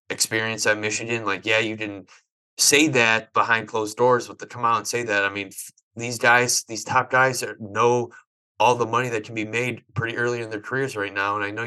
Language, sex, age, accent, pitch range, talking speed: English, male, 20-39, American, 100-115 Hz, 230 wpm